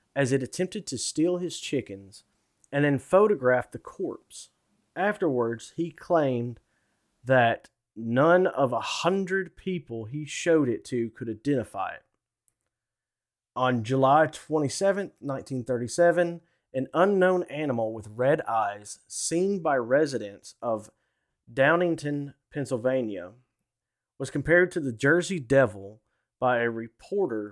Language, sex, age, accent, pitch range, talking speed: English, male, 30-49, American, 120-160 Hz, 115 wpm